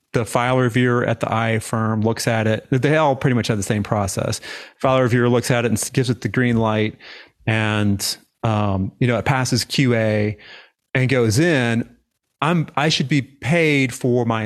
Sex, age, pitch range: male, 30-49, 110-130 Hz